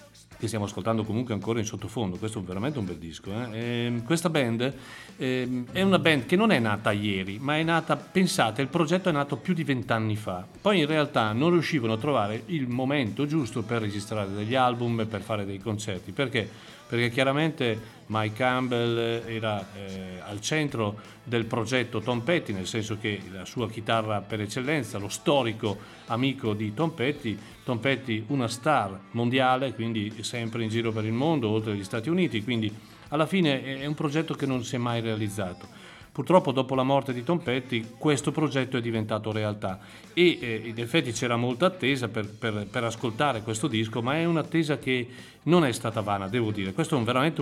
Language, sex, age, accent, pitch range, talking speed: Italian, male, 40-59, native, 110-145 Hz, 190 wpm